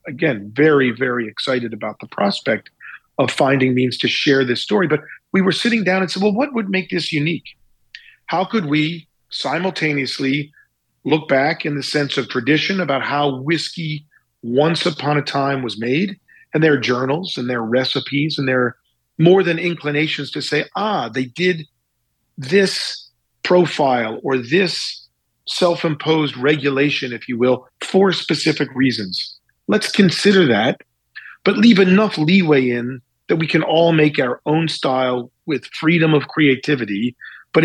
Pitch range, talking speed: 130-170 Hz, 155 wpm